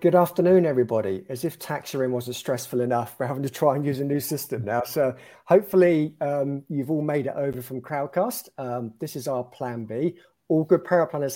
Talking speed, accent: 200 wpm, British